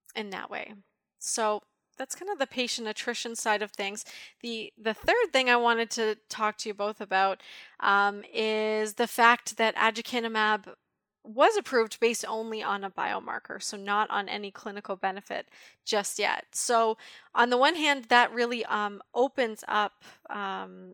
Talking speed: 165 wpm